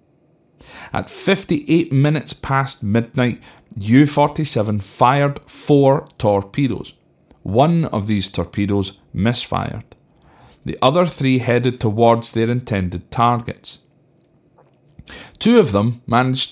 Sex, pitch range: male, 100-135 Hz